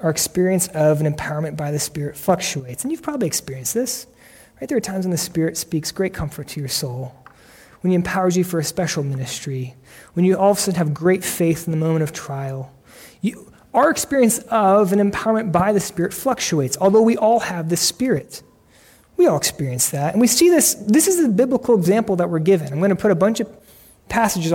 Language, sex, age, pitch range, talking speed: English, male, 30-49, 160-215 Hz, 215 wpm